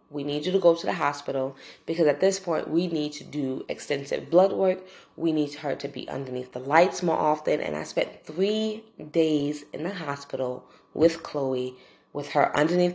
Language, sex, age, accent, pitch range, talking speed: English, female, 20-39, American, 145-180 Hz, 195 wpm